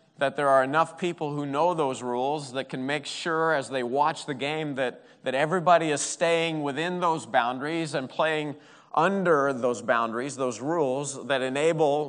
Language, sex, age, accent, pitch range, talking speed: English, male, 40-59, American, 140-165 Hz, 175 wpm